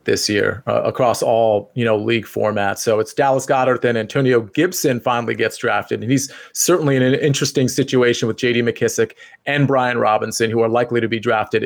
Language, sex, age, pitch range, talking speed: English, male, 30-49, 120-145 Hz, 195 wpm